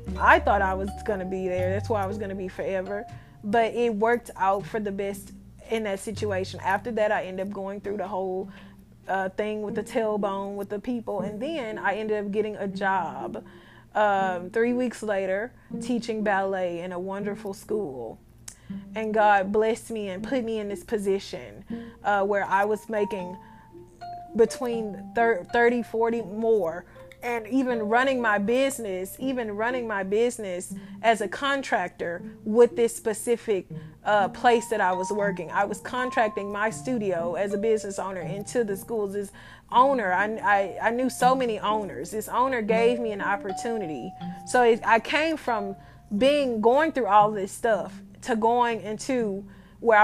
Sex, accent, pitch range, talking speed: female, American, 195-230 Hz, 170 wpm